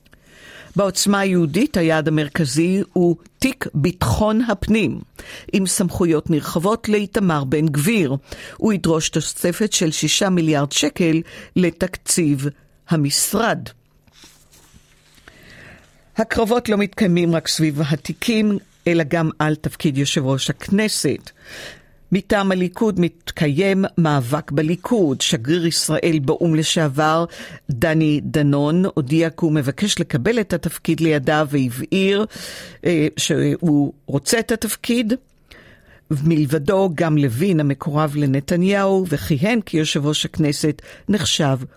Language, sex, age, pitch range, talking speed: Hebrew, female, 50-69, 150-195 Hz, 100 wpm